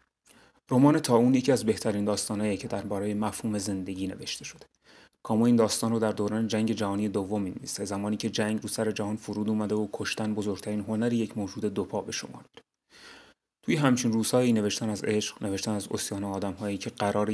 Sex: male